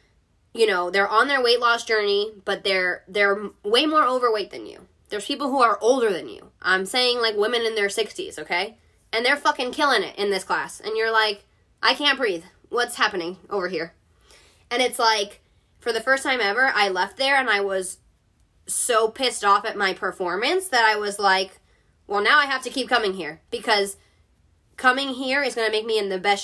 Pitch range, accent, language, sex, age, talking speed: 185-250 Hz, American, English, female, 20-39, 210 wpm